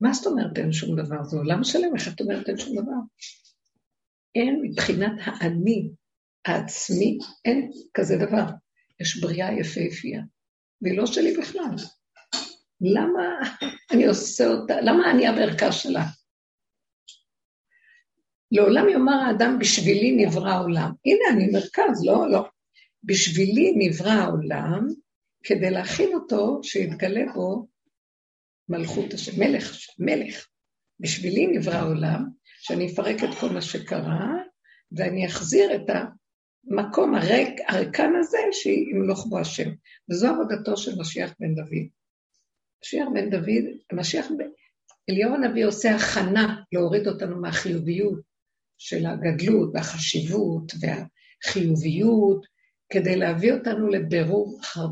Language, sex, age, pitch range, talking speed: Hebrew, female, 50-69, 185-255 Hz, 115 wpm